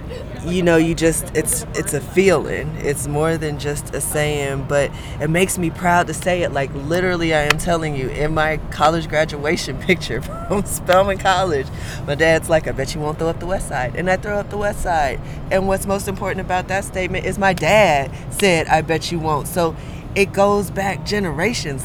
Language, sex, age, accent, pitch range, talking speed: English, female, 20-39, American, 140-170 Hz, 205 wpm